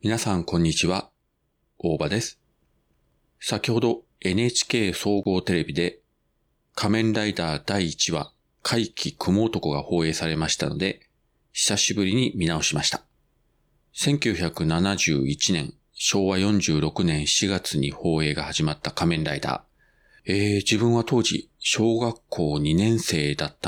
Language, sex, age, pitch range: Japanese, male, 40-59, 80-120 Hz